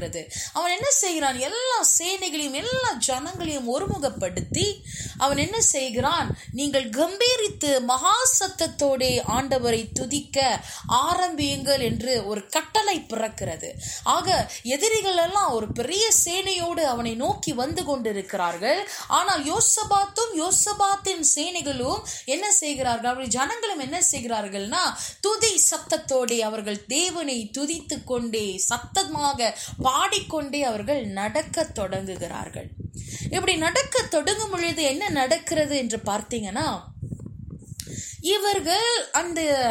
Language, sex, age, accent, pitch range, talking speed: Tamil, female, 20-39, native, 245-385 Hz, 55 wpm